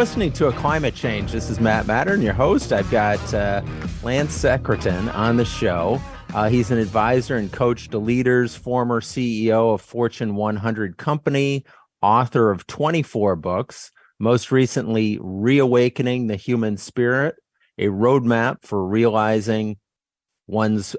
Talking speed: 135 wpm